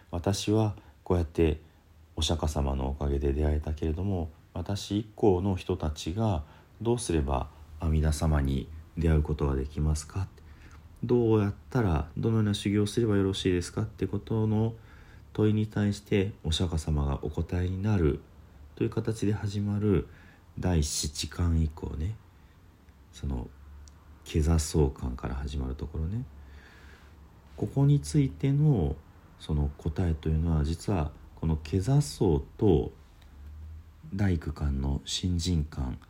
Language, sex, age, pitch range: Japanese, male, 40-59, 75-95 Hz